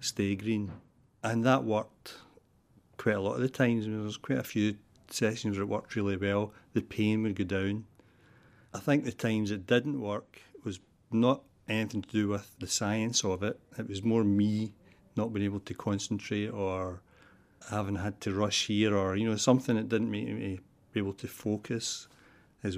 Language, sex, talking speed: English, male, 190 wpm